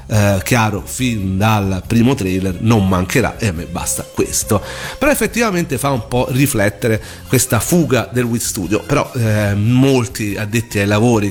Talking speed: 160 wpm